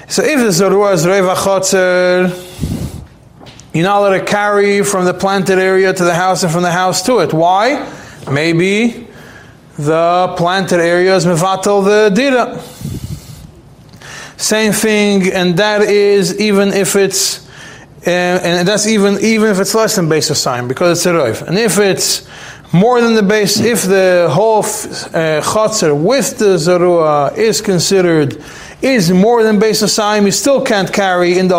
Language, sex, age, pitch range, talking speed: English, male, 30-49, 165-205 Hz, 160 wpm